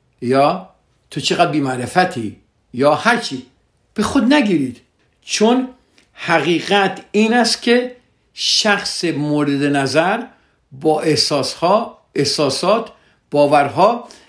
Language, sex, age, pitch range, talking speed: Persian, male, 60-79, 125-190 Hz, 90 wpm